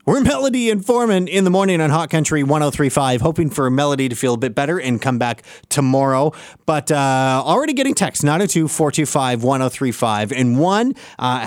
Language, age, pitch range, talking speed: English, 30-49, 125-175 Hz, 165 wpm